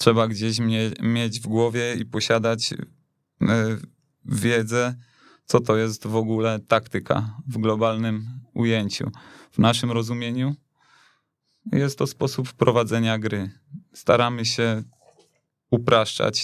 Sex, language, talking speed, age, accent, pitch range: male, Polish, 100 wpm, 20-39, native, 110-130 Hz